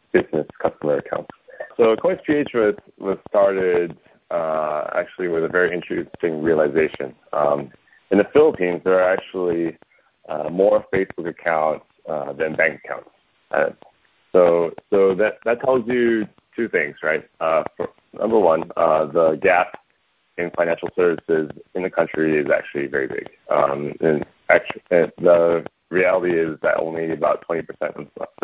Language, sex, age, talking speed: English, male, 30-49, 145 wpm